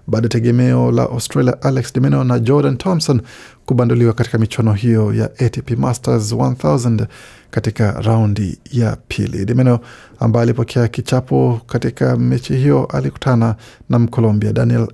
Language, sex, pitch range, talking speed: Swahili, male, 110-130 Hz, 135 wpm